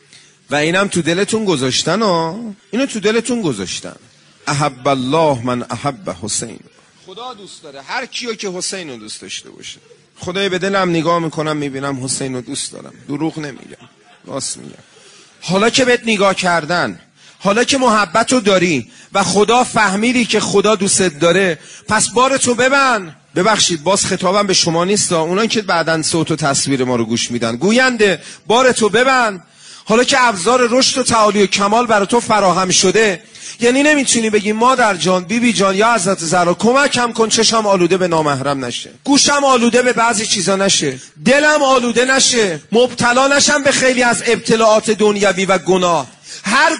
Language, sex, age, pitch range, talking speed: Persian, male, 40-59, 170-240 Hz, 170 wpm